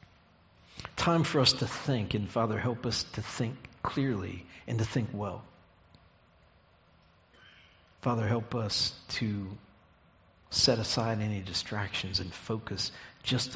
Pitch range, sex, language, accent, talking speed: 90-125 Hz, male, English, American, 120 wpm